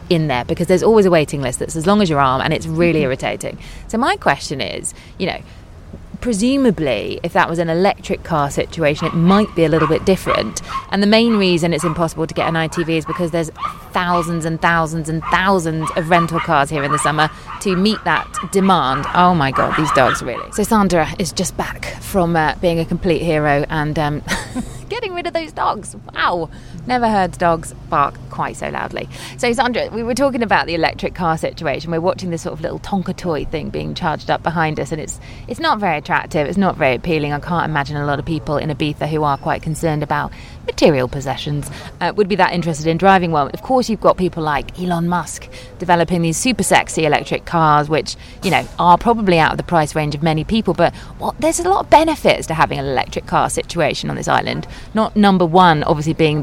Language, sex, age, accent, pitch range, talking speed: English, female, 20-39, British, 155-190 Hz, 220 wpm